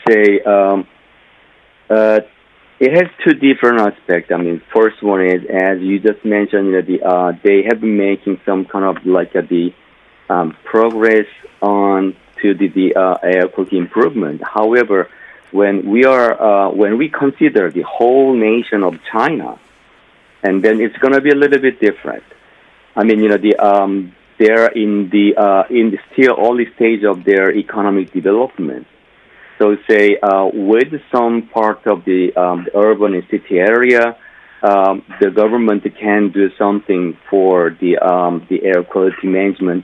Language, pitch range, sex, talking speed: English, 95-110 Hz, male, 165 wpm